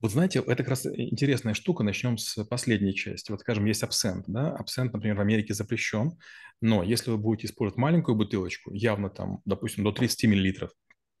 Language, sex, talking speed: Russian, male, 180 wpm